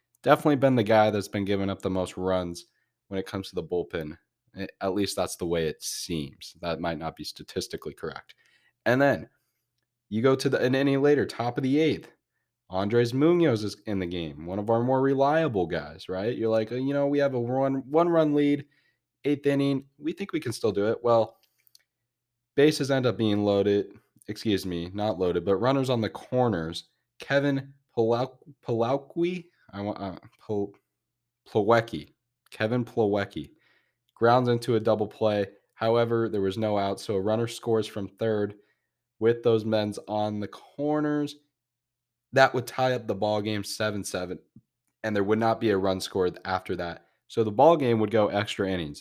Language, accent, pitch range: English, American, 100-130 Hz